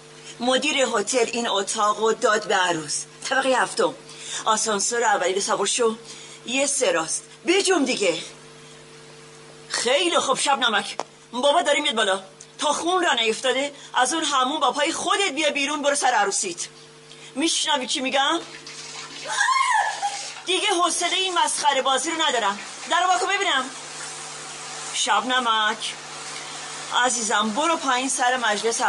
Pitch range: 230-305 Hz